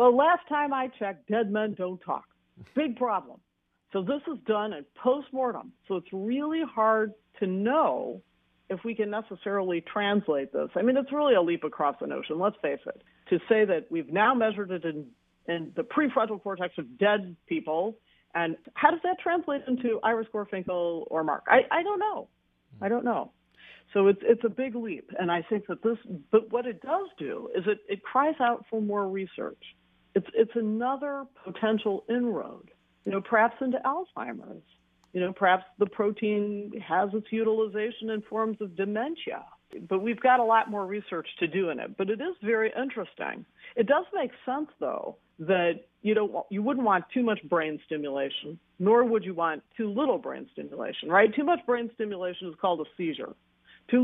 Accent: American